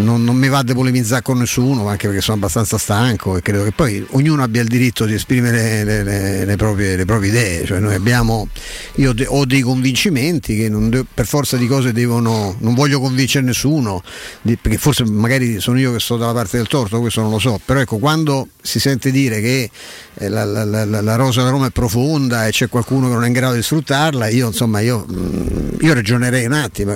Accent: native